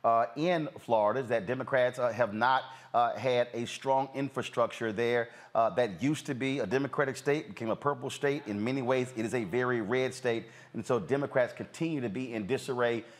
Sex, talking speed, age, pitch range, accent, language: male, 200 wpm, 40-59, 115-135 Hz, American, English